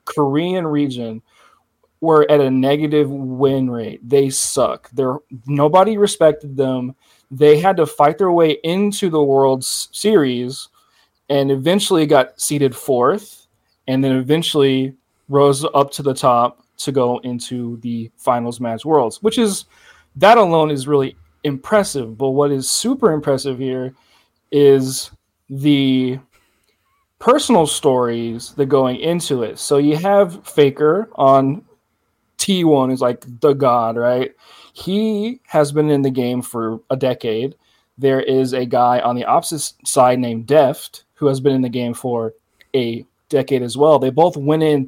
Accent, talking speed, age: American, 150 wpm, 20-39